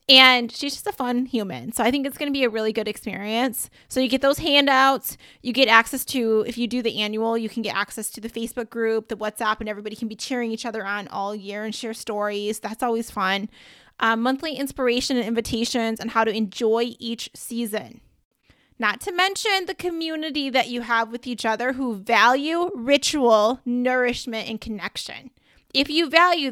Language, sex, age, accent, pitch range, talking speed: English, female, 20-39, American, 225-270 Hz, 200 wpm